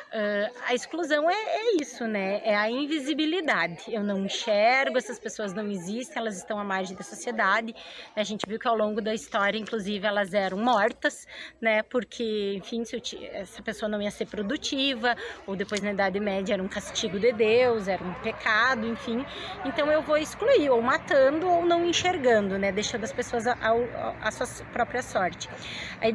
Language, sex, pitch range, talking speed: Portuguese, female, 220-280 Hz, 180 wpm